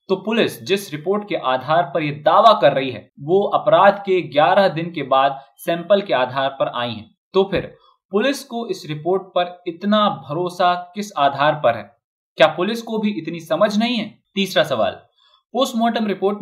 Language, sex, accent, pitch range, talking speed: Hindi, male, native, 145-200 Hz, 185 wpm